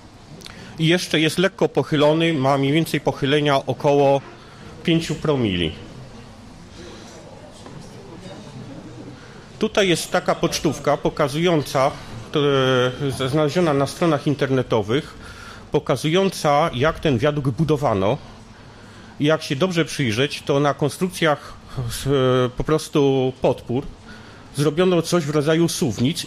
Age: 40-59